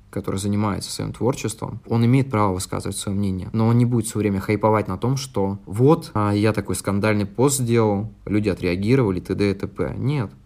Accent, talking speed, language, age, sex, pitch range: native, 185 wpm, Russian, 20-39, male, 100-120 Hz